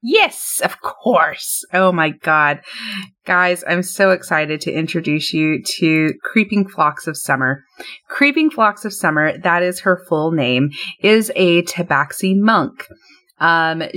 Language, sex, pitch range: English, female, 155-195 Hz